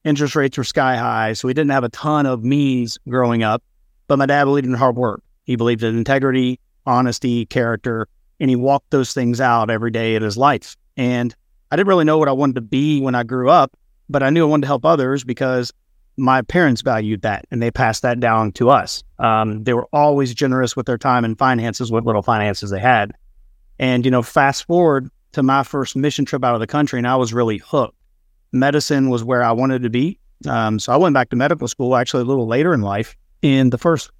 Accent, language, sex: American, English, male